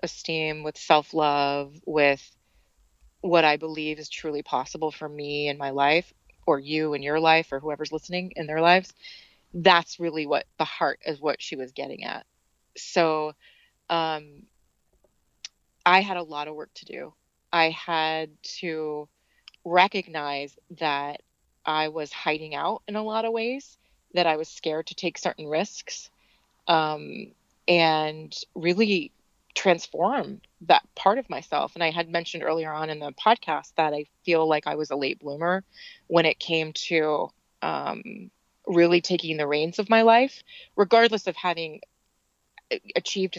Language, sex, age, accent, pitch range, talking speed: English, female, 30-49, American, 150-175 Hz, 155 wpm